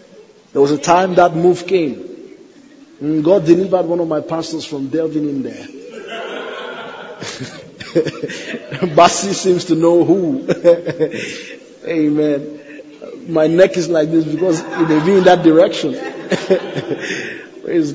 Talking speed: 125 wpm